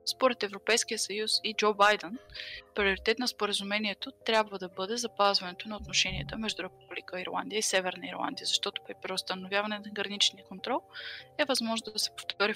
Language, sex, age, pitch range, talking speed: Bulgarian, female, 20-39, 190-220 Hz, 155 wpm